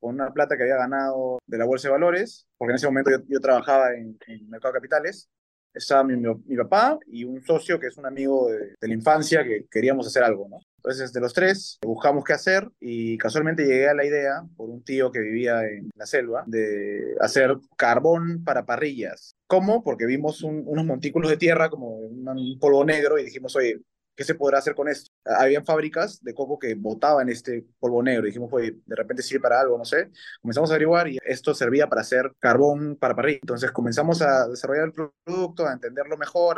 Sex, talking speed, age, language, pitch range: male, 215 wpm, 20-39, Spanish, 125-155 Hz